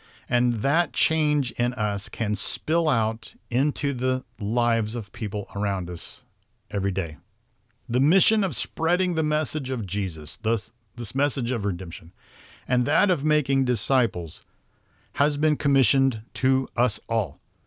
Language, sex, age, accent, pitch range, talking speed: English, male, 50-69, American, 105-135 Hz, 140 wpm